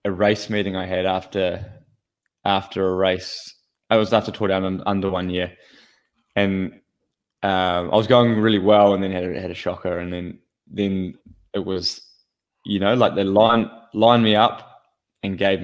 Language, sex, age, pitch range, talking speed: English, male, 10-29, 90-105 Hz, 180 wpm